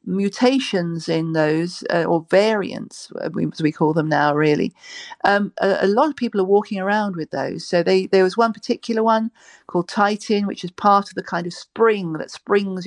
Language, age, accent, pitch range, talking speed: English, 40-59, British, 170-220 Hz, 195 wpm